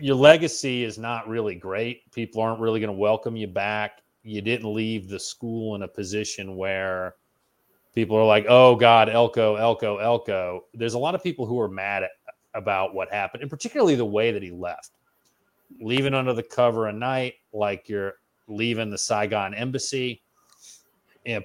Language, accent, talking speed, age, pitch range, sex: English, American, 175 wpm, 30-49, 105-130 Hz, male